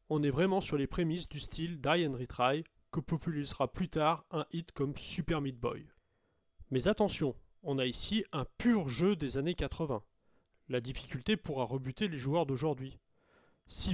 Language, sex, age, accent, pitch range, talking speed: French, male, 30-49, French, 135-170 Hz, 170 wpm